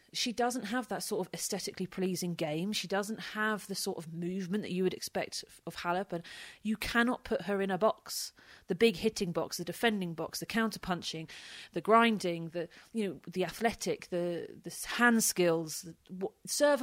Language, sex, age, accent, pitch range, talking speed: English, female, 30-49, British, 175-220 Hz, 190 wpm